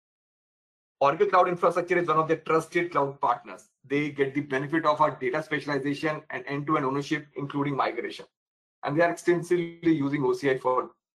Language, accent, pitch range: English, Indian, 145-175 Hz